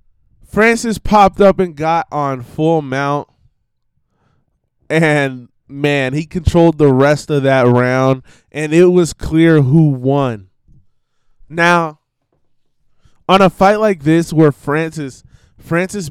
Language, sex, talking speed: English, male, 120 wpm